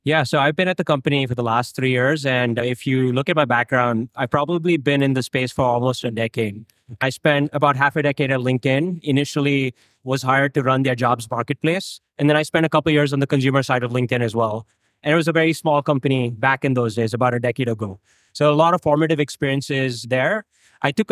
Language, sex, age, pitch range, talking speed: English, male, 20-39, 130-160 Hz, 240 wpm